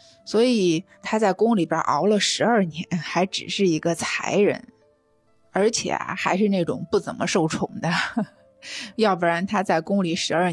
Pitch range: 165-215 Hz